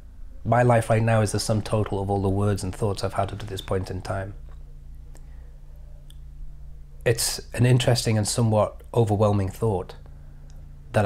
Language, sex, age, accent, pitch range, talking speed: English, male, 30-49, British, 75-120 Hz, 165 wpm